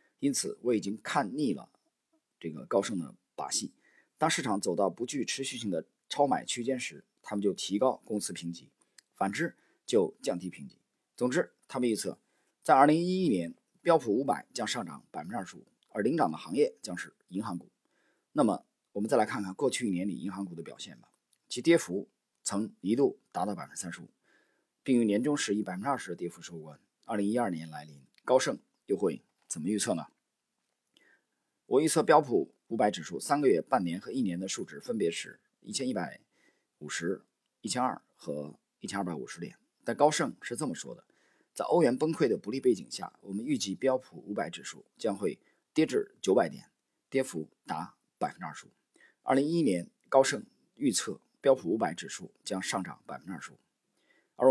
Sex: male